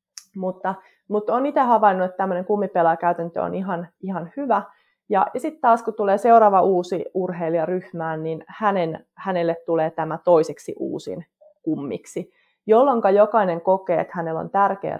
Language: Finnish